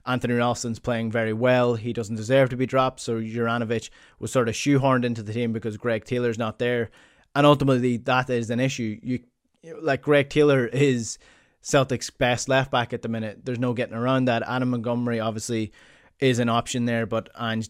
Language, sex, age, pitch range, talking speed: English, male, 20-39, 115-130 Hz, 190 wpm